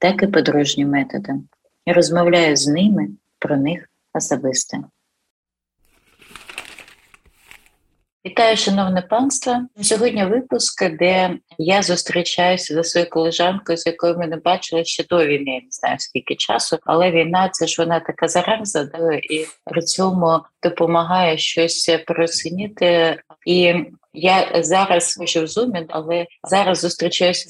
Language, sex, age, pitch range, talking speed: Ukrainian, female, 30-49, 160-185 Hz, 125 wpm